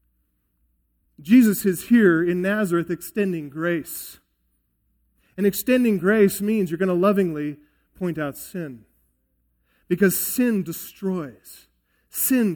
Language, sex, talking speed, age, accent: English, male, 105 wpm, 40-59, American